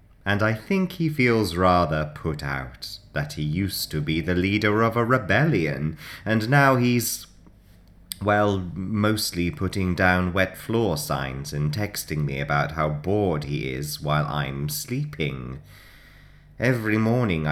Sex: male